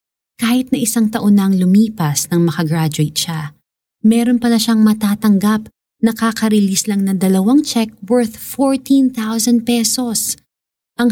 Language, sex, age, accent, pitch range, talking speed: Filipino, female, 20-39, native, 160-220 Hz, 130 wpm